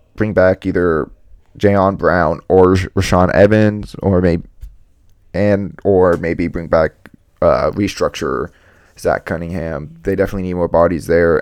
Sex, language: male, English